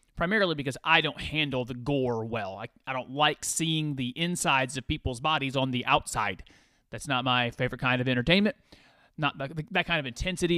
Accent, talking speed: American, 185 wpm